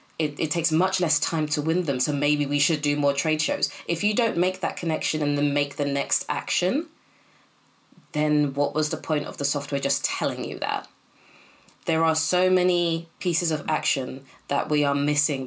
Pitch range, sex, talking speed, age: 150-190 Hz, female, 200 wpm, 20-39